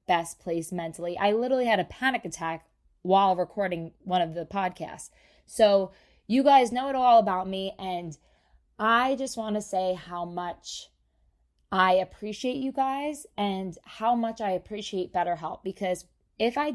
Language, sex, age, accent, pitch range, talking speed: English, female, 20-39, American, 180-220 Hz, 160 wpm